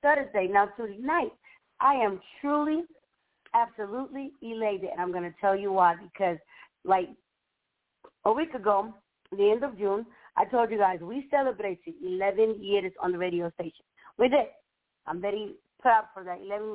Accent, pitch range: American, 200-275 Hz